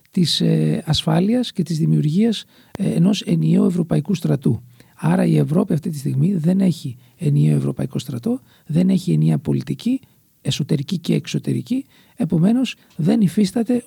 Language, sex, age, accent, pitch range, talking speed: Greek, male, 50-69, native, 130-205 Hz, 130 wpm